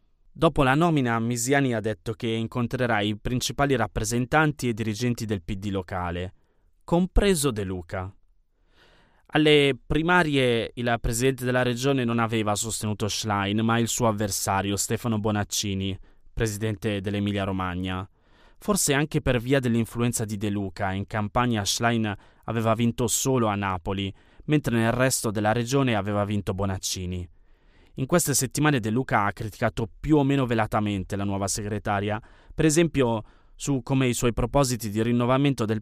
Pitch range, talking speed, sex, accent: 105-130 Hz, 140 wpm, male, native